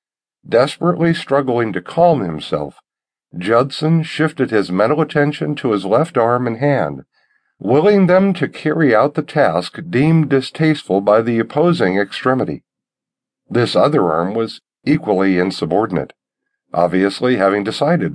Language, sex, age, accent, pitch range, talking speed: English, male, 50-69, American, 110-170 Hz, 125 wpm